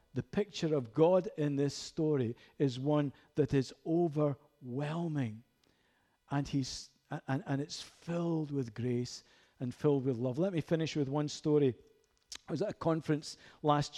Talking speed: 155 wpm